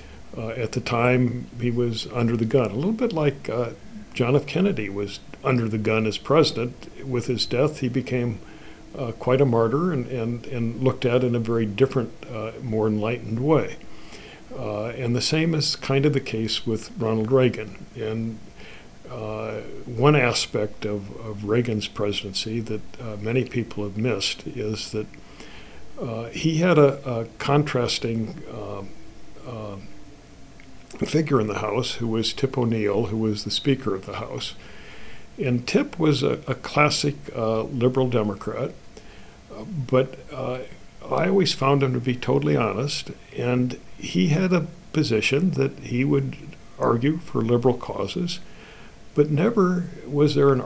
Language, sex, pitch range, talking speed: English, male, 110-135 Hz, 155 wpm